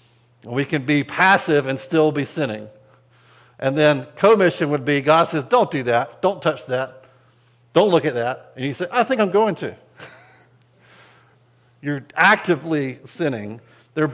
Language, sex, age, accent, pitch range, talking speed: English, male, 60-79, American, 120-150 Hz, 155 wpm